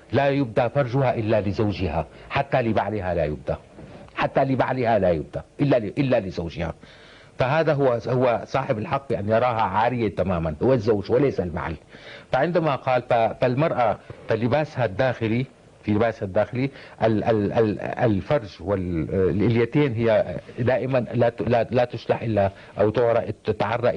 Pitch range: 105-135 Hz